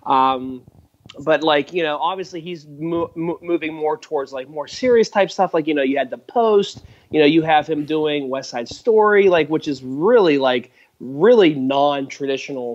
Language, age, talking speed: English, 30-49, 190 wpm